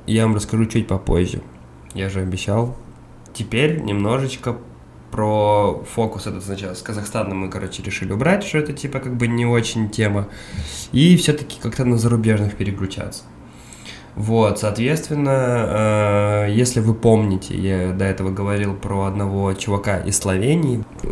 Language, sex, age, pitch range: Russian, male, 20-39, 100-120 Hz